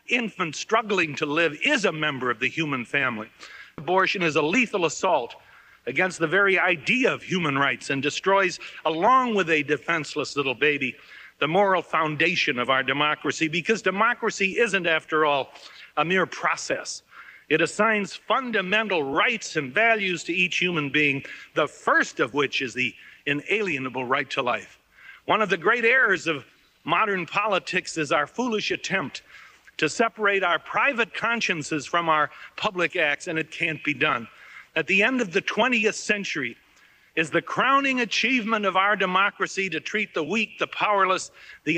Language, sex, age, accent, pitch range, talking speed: English, male, 60-79, American, 155-210 Hz, 160 wpm